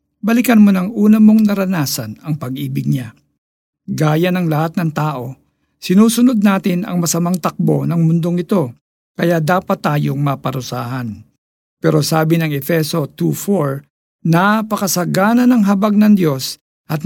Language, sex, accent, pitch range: Filipino, male, native, 140-185 Hz